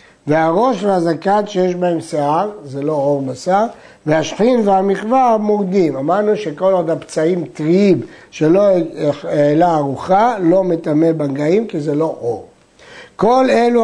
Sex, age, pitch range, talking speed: male, 60-79, 160-220 Hz, 125 wpm